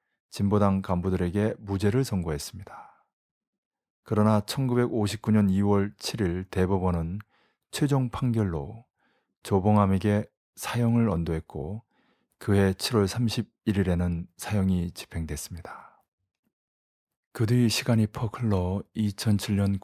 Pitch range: 90-105 Hz